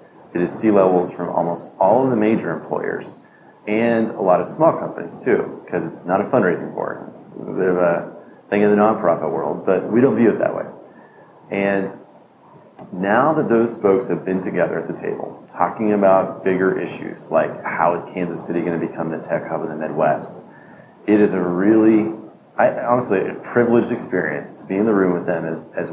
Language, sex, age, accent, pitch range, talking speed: English, male, 30-49, American, 95-115 Hz, 205 wpm